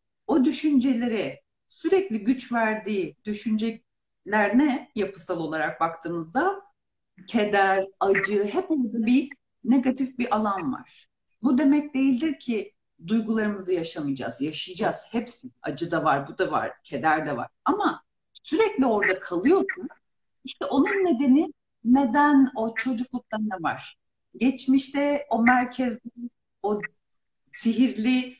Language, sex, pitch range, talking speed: Turkish, female, 200-275 Hz, 110 wpm